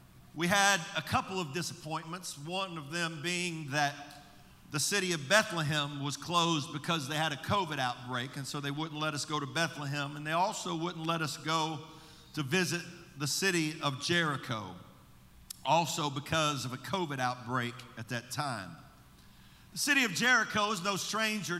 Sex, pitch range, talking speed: male, 145-200 Hz, 170 wpm